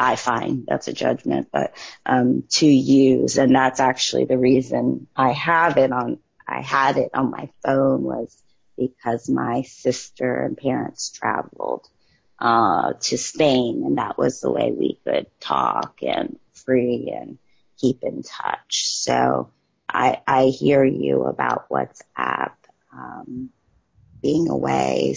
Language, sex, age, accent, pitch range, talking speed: English, female, 30-49, American, 120-140 Hz, 140 wpm